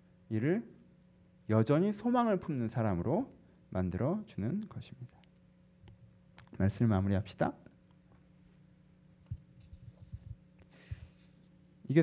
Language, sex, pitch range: Korean, male, 95-150 Hz